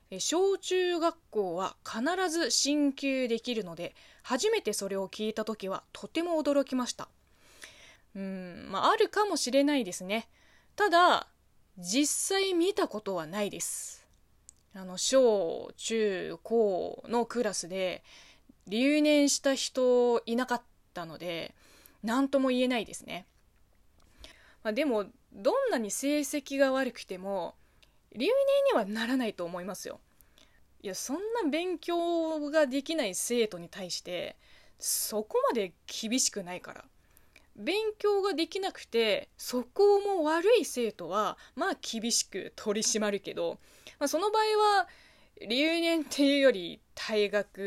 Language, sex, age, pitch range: Japanese, female, 20-39, 200-310 Hz